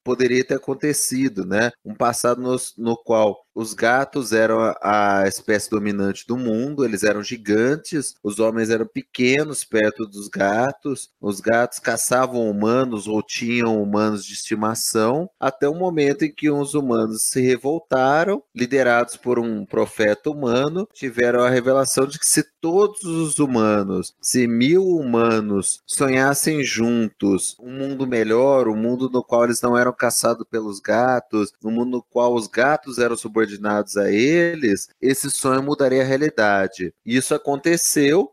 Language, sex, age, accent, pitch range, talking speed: Portuguese, male, 30-49, Brazilian, 110-135 Hz, 150 wpm